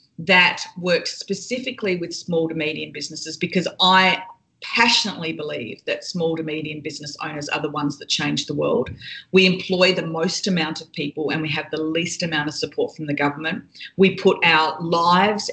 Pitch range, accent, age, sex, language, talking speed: 160-190 Hz, Australian, 40-59, female, English, 180 wpm